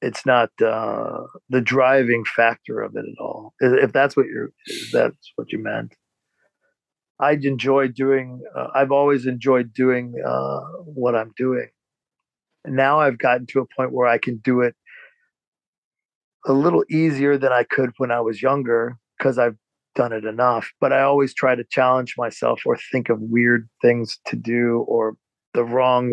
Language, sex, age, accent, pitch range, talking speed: English, male, 40-59, American, 120-135 Hz, 170 wpm